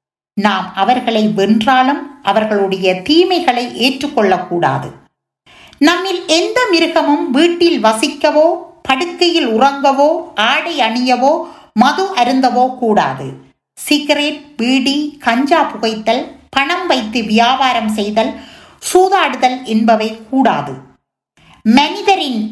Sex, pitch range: female, 220-315 Hz